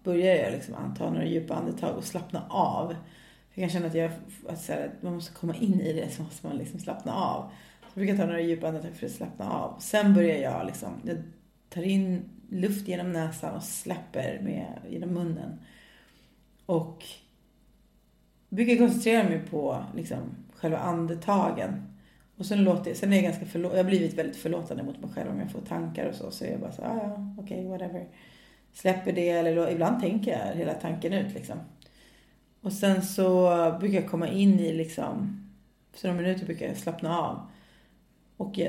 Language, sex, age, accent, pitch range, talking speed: English, female, 30-49, Swedish, 165-200 Hz, 180 wpm